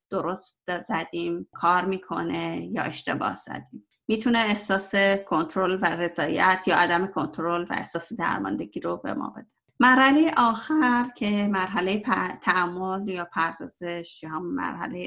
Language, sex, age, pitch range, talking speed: Persian, female, 30-49, 175-215 Hz, 125 wpm